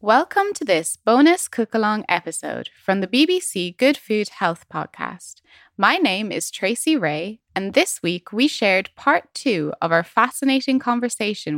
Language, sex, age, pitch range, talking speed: English, female, 20-39, 170-255 Hz, 155 wpm